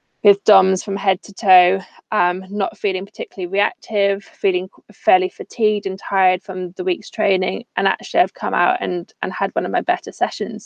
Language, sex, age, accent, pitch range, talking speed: English, female, 20-39, British, 185-220 Hz, 185 wpm